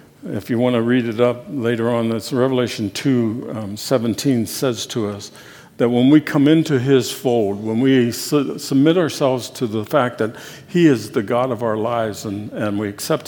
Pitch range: 115-145 Hz